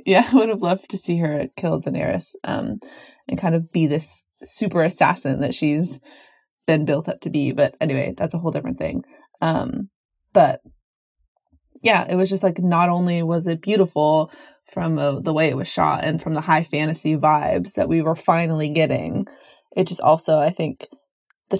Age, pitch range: 20-39, 160-195 Hz